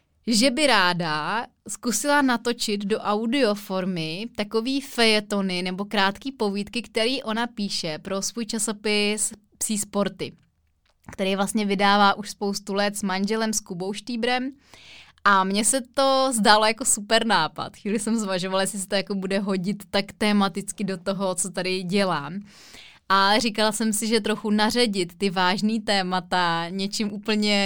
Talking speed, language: 145 wpm, Czech